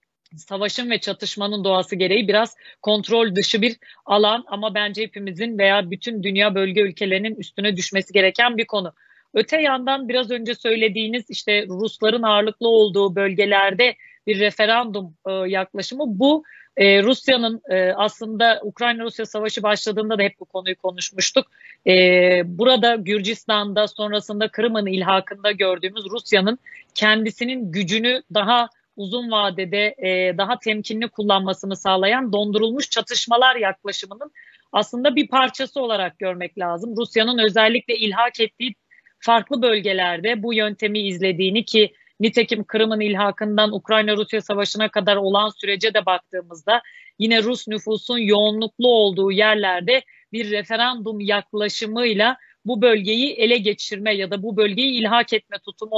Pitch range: 200-230 Hz